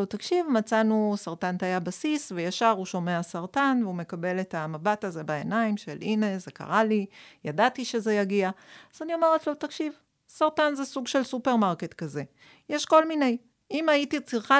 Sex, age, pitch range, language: female, 40-59, 185-250 Hz, Hebrew